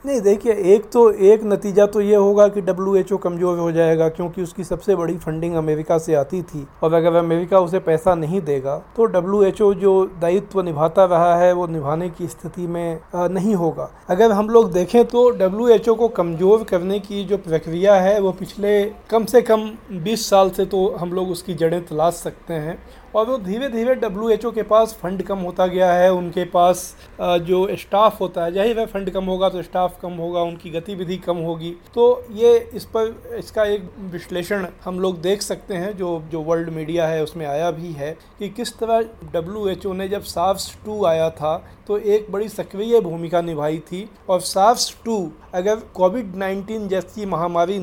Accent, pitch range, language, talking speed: native, 170-210 Hz, Hindi, 195 wpm